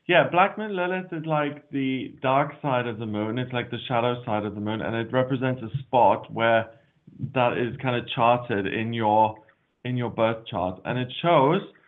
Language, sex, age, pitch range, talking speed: English, male, 20-39, 120-150 Hz, 200 wpm